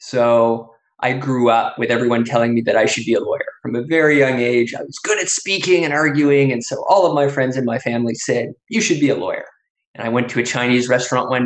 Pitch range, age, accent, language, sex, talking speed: 125-150 Hz, 20-39, American, English, male, 255 wpm